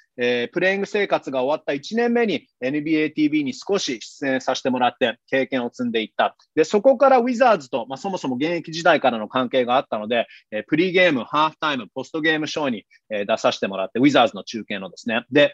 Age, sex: 30-49, male